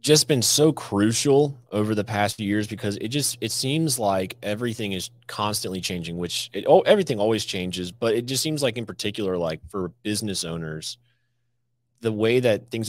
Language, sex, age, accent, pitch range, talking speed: English, male, 30-49, American, 95-120 Hz, 185 wpm